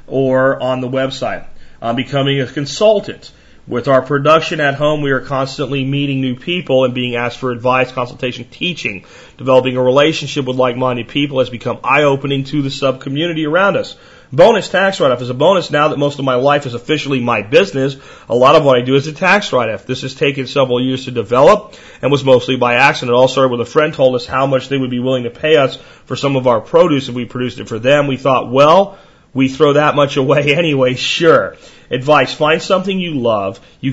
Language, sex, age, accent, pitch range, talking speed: English, male, 40-59, American, 130-150 Hz, 215 wpm